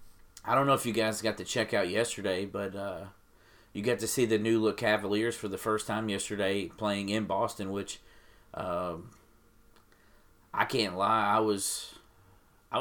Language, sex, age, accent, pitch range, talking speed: English, male, 40-59, American, 100-110 Hz, 175 wpm